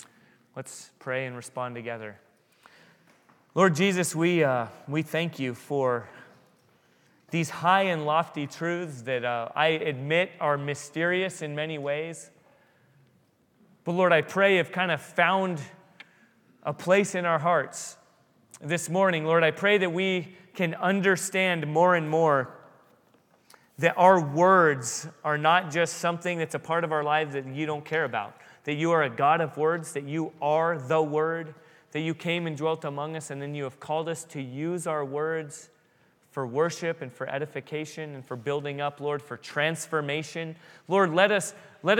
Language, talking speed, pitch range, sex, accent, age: English, 165 wpm, 150-185 Hz, male, American, 30-49